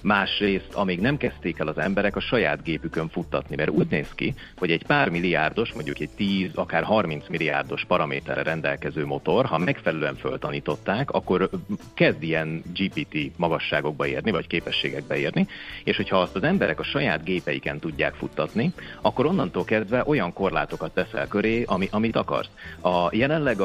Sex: male